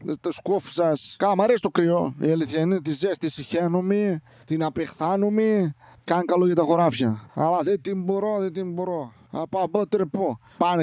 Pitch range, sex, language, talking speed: 145-175 Hz, male, Greek, 160 wpm